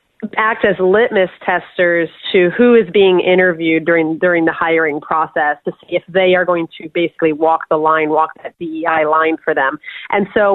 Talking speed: 190 wpm